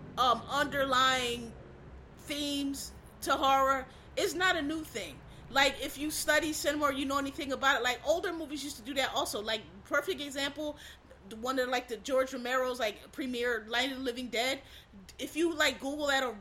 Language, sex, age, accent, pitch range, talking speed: English, female, 30-49, American, 230-280 Hz, 190 wpm